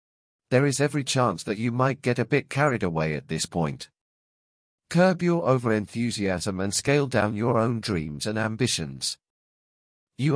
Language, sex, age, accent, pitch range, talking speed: English, male, 50-69, British, 100-135 Hz, 155 wpm